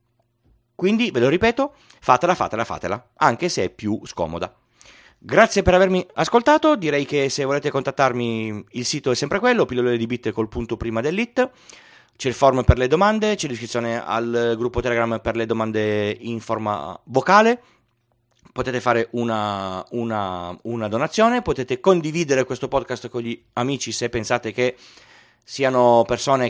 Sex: male